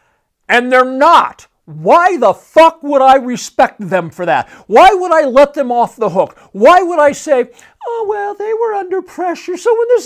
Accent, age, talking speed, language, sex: American, 50-69, 195 wpm, English, male